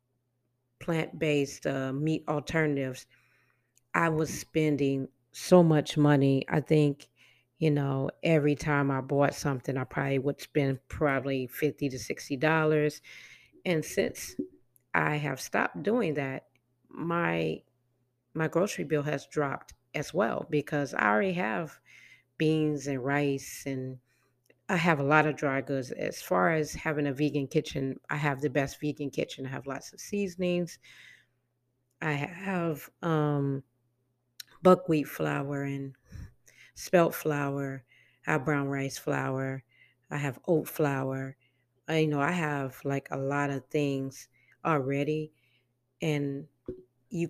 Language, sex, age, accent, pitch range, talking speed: English, female, 40-59, American, 130-155 Hz, 135 wpm